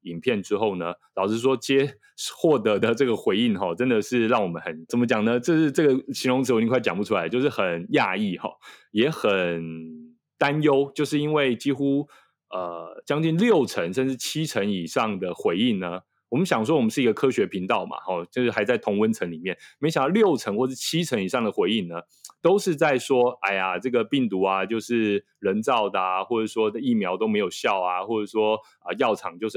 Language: Chinese